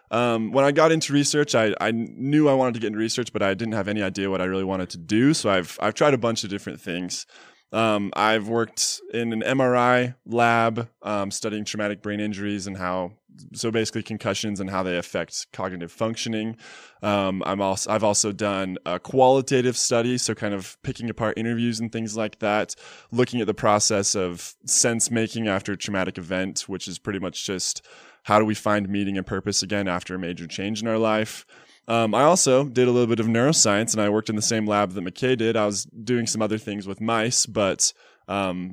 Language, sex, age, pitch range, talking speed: English, male, 20-39, 100-115 Hz, 215 wpm